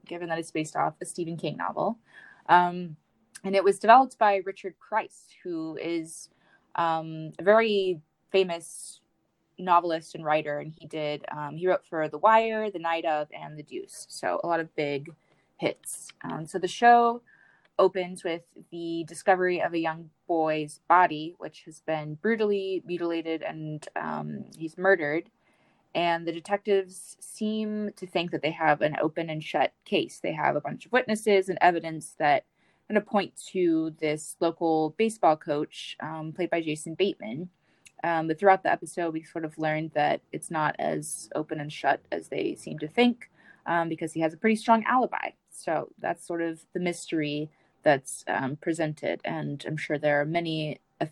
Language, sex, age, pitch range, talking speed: English, female, 20-39, 155-190 Hz, 175 wpm